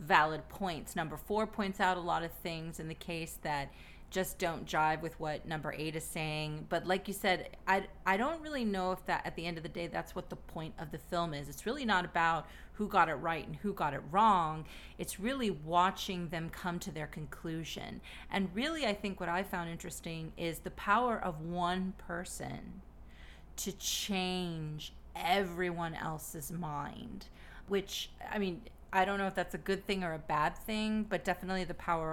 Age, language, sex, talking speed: 30-49, English, female, 200 wpm